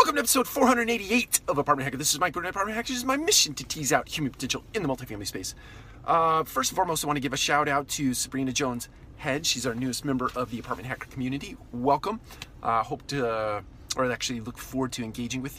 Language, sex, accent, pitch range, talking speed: English, male, American, 110-135 Hz, 245 wpm